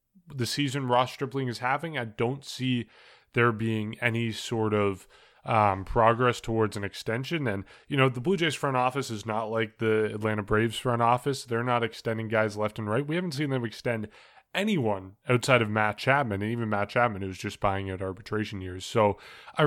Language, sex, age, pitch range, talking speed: English, male, 20-39, 105-135 Hz, 195 wpm